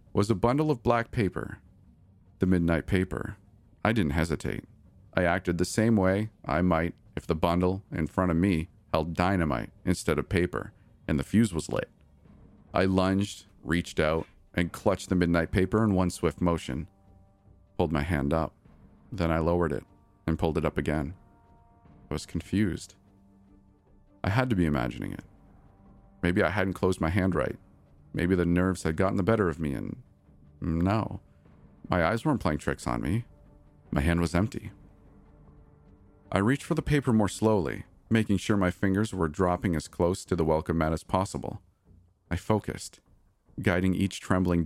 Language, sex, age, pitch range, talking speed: English, male, 40-59, 80-100 Hz, 170 wpm